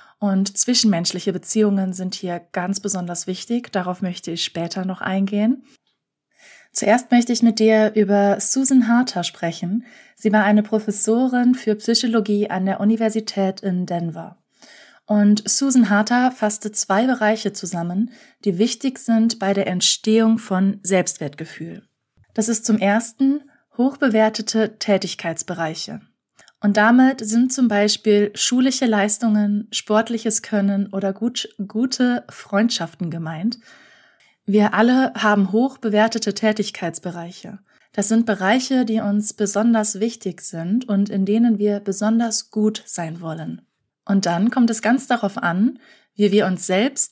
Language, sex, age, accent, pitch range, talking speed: German, female, 20-39, German, 195-230 Hz, 130 wpm